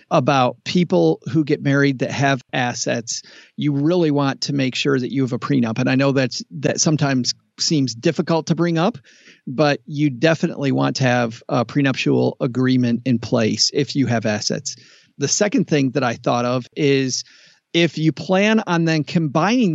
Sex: male